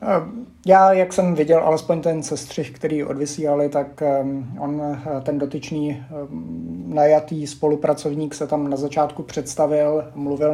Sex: male